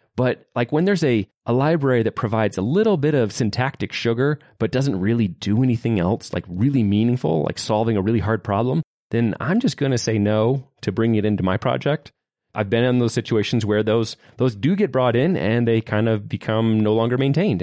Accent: American